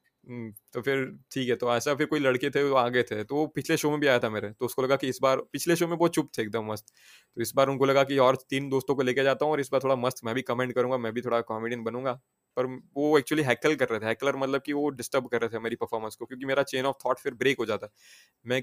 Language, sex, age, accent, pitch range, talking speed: Hindi, male, 20-39, native, 120-145 Hz, 275 wpm